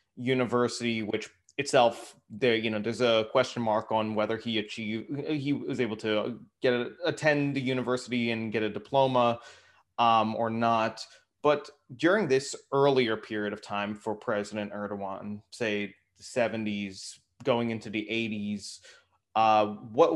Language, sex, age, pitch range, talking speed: Turkish, male, 20-39, 105-125 Hz, 145 wpm